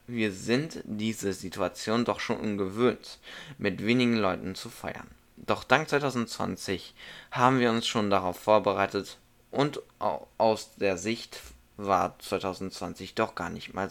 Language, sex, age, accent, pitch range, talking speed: German, male, 20-39, German, 100-125 Hz, 135 wpm